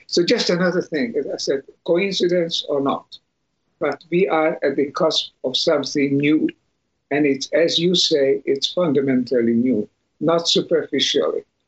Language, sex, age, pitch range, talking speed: English, male, 60-79, 145-180 Hz, 150 wpm